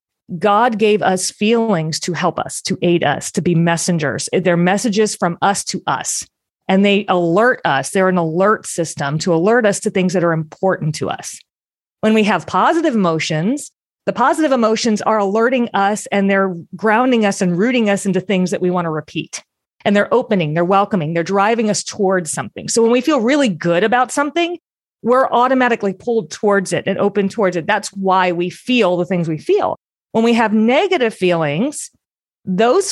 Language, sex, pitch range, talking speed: English, female, 185-235 Hz, 190 wpm